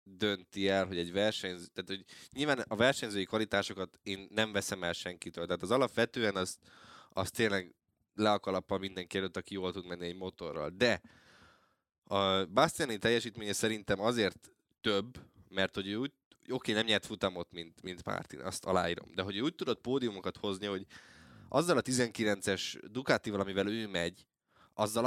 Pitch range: 95-110 Hz